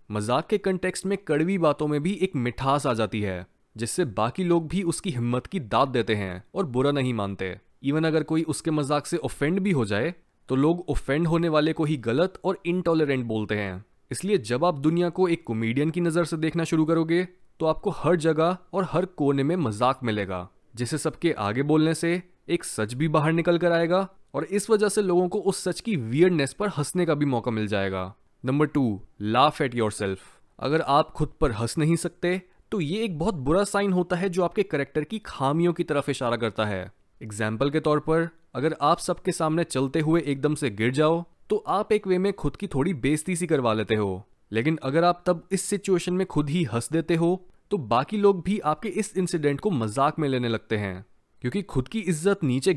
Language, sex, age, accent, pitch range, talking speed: Hindi, male, 20-39, native, 125-180 Hz, 215 wpm